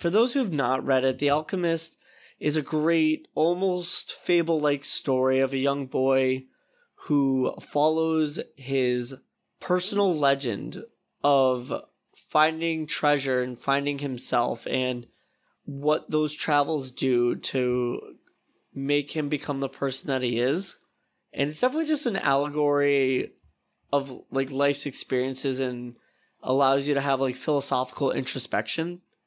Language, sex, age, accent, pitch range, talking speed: English, male, 20-39, American, 125-150 Hz, 125 wpm